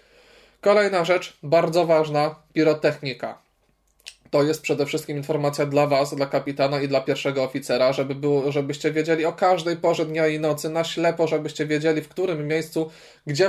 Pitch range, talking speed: 145-180 Hz, 150 wpm